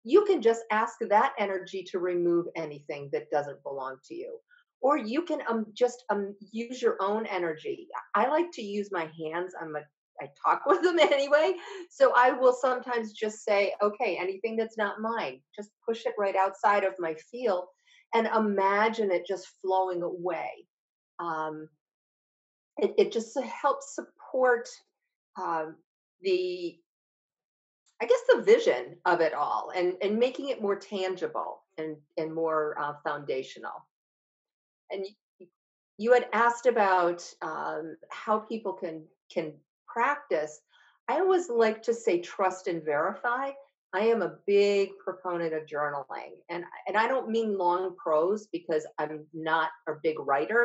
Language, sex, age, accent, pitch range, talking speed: English, female, 40-59, American, 175-270 Hz, 150 wpm